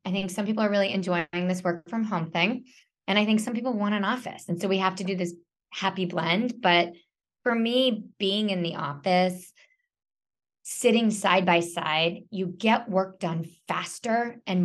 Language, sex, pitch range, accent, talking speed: English, female, 170-210 Hz, American, 190 wpm